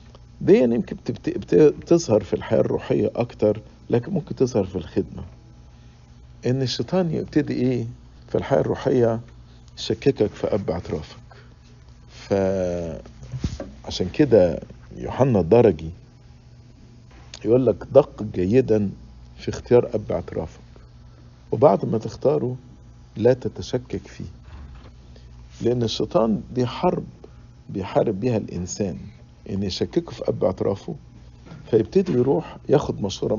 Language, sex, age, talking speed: English, male, 50-69, 100 wpm